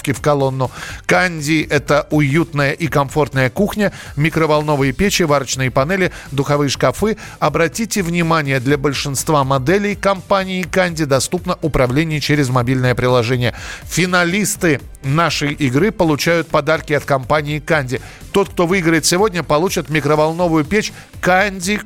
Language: Russian